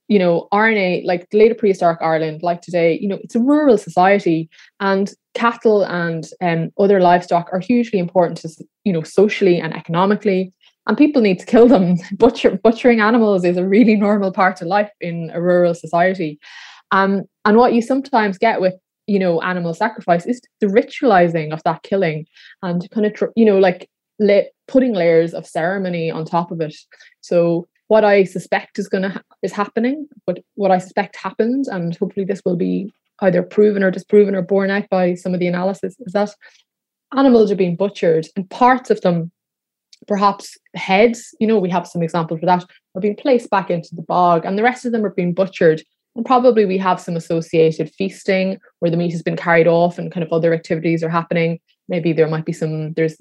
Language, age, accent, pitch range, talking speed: English, 20-39, Irish, 170-210 Hz, 195 wpm